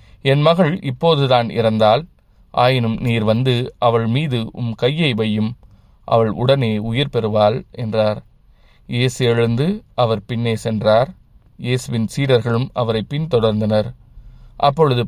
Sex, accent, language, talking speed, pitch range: male, native, Tamil, 105 wpm, 110-125 Hz